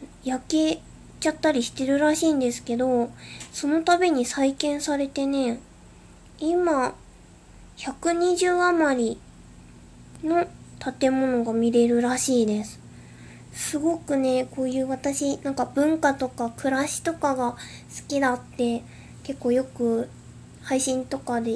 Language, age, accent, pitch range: Japanese, 20-39, native, 245-280 Hz